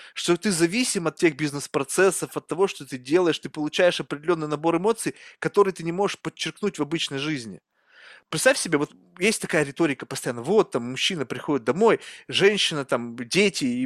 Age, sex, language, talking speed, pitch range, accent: 20-39, male, Russian, 175 wpm, 150-195 Hz, native